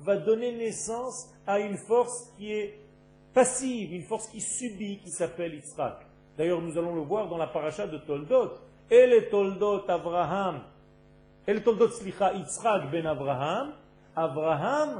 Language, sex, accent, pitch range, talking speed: French, male, French, 175-235 Hz, 150 wpm